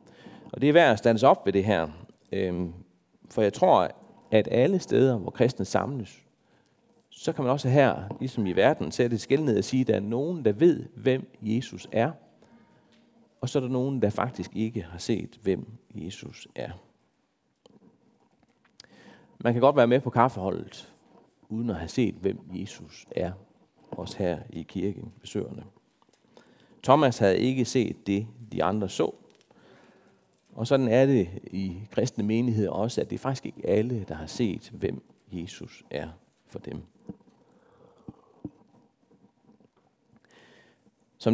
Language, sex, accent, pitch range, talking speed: Danish, male, native, 100-130 Hz, 150 wpm